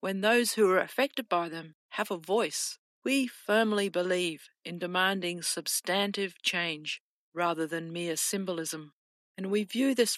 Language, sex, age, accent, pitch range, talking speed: English, female, 50-69, Australian, 170-210 Hz, 145 wpm